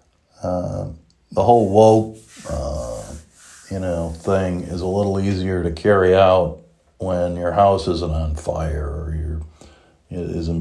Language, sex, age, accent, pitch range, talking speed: English, male, 40-59, American, 80-95 Hz, 135 wpm